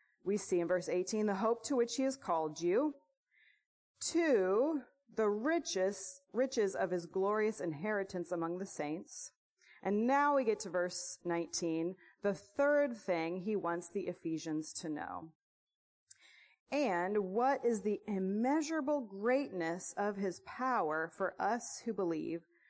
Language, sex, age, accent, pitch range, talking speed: English, female, 30-49, American, 180-270 Hz, 140 wpm